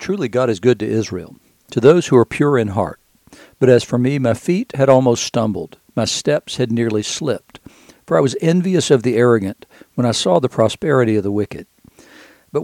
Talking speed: 205 wpm